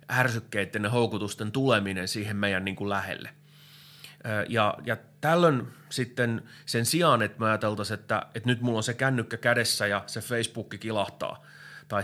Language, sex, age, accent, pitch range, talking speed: Finnish, male, 30-49, native, 105-140 Hz, 150 wpm